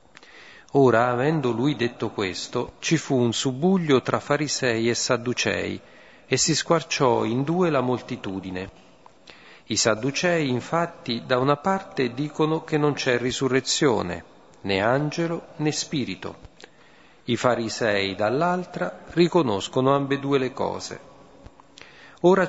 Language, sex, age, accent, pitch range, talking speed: Italian, male, 40-59, native, 115-150 Hz, 115 wpm